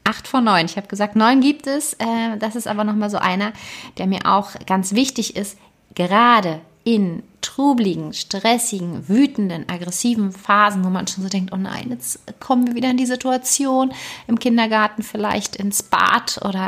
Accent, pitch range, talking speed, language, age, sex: German, 175-225 Hz, 175 wpm, German, 30-49, female